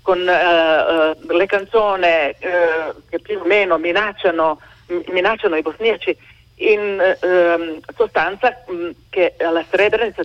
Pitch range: 165-205 Hz